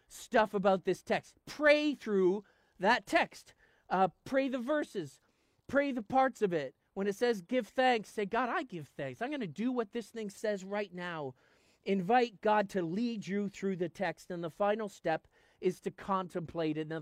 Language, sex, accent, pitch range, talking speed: English, male, American, 165-220 Hz, 190 wpm